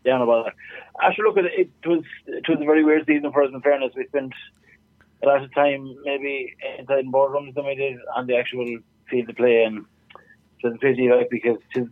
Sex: male